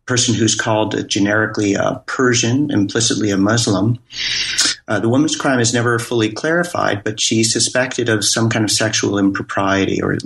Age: 40-59